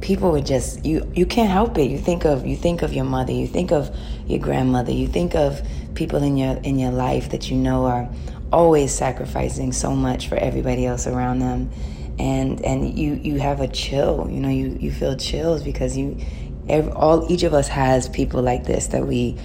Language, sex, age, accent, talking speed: German, female, 20-39, American, 215 wpm